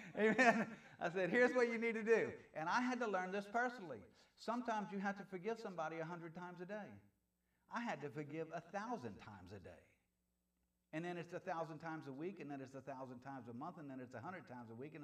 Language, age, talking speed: English, 50-69, 245 wpm